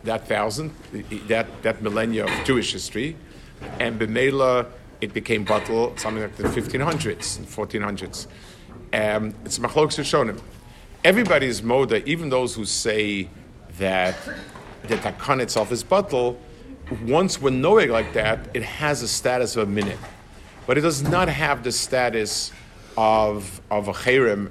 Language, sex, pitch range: English, male, 105-130 Hz